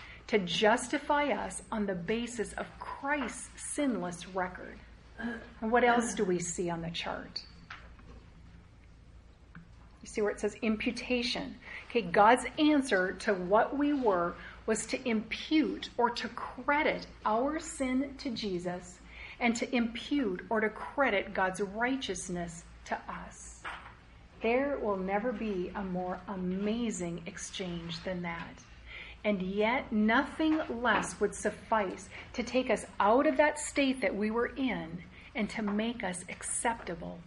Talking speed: 135 wpm